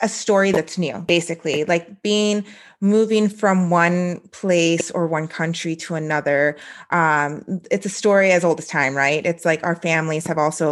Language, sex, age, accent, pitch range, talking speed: English, female, 30-49, American, 155-185 Hz, 175 wpm